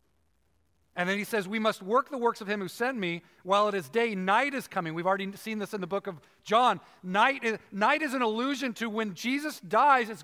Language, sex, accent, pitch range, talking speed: English, male, American, 160-230 Hz, 240 wpm